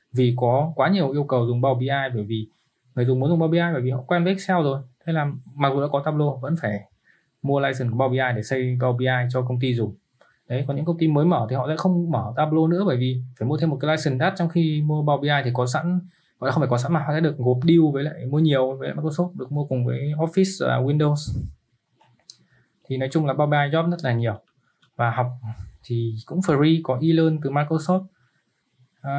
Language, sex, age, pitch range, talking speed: Vietnamese, male, 20-39, 125-155 Hz, 255 wpm